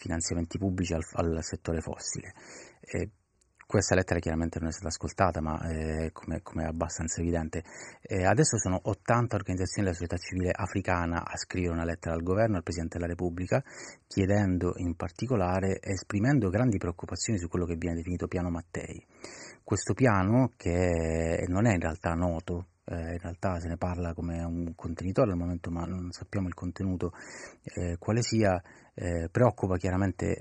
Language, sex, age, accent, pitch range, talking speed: Italian, male, 30-49, native, 85-100 Hz, 160 wpm